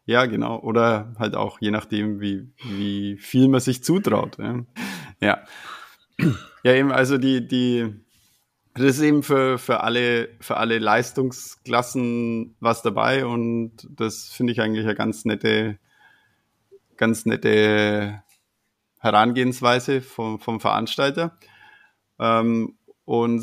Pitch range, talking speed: 110-125 Hz, 115 wpm